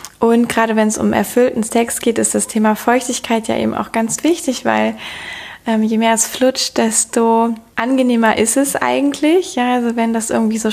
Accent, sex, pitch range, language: German, female, 205-235 Hz, German